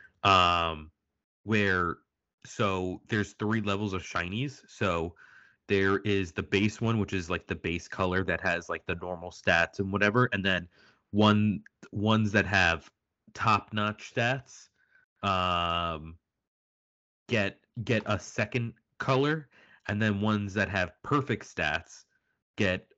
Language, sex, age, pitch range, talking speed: English, male, 30-49, 90-105 Hz, 135 wpm